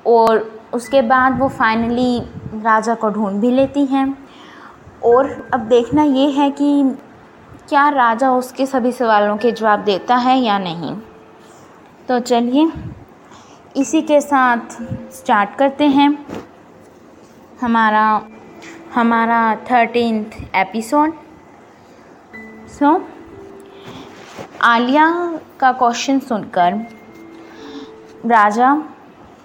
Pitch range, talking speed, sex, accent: 215-280 Hz, 95 wpm, female, native